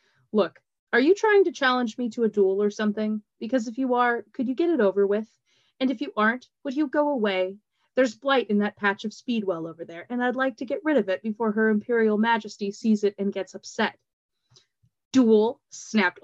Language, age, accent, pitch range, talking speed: English, 20-39, American, 195-245 Hz, 215 wpm